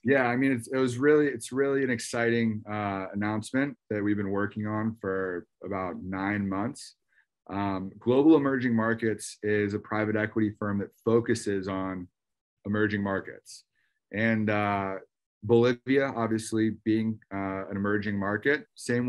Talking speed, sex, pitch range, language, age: 145 wpm, male, 105-115 Hz, English, 30-49